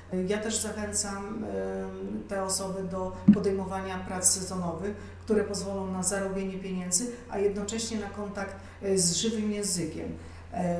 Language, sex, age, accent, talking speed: Polish, female, 40-59, native, 115 wpm